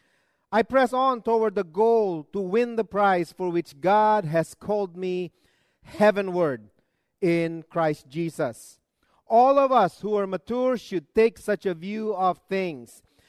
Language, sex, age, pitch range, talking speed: English, male, 40-59, 160-220 Hz, 150 wpm